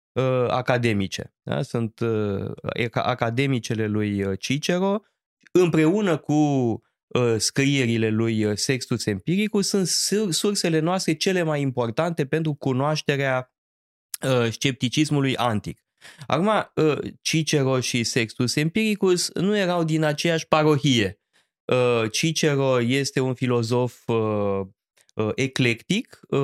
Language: Romanian